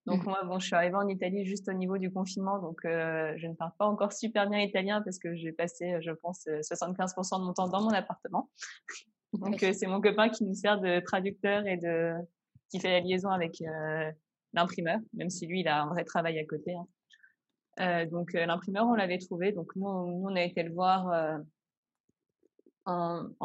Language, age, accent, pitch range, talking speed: French, 20-39, French, 170-195 Hz, 205 wpm